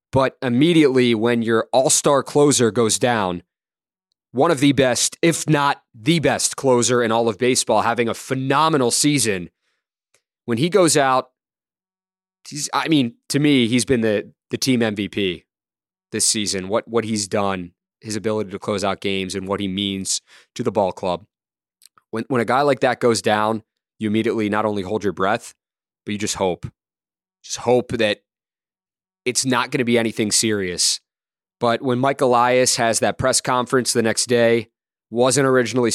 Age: 20-39